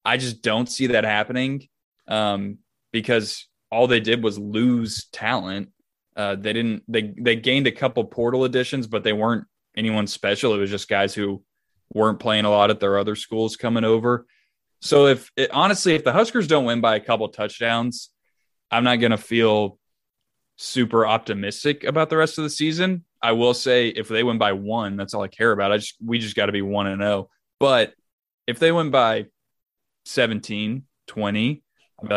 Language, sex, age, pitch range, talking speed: English, male, 20-39, 105-125 Hz, 190 wpm